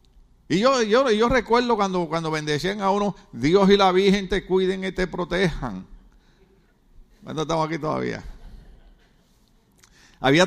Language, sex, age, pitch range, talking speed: Spanish, male, 50-69, 155-205 Hz, 140 wpm